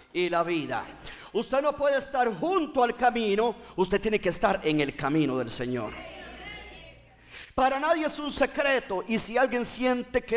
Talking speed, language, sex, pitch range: 170 wpm, Spanish, male, 185-245 Hz